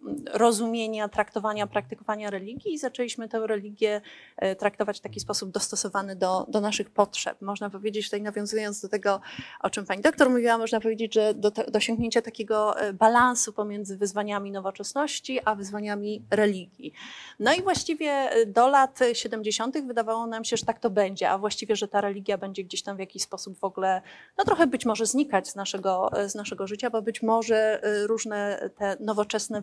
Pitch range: 205-255 Hz